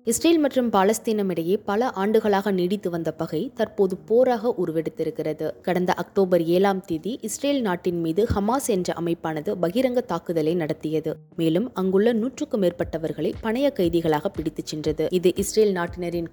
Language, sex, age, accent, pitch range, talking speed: Tamil, female, 20-39, native, 160-215 Hz, 130 wpm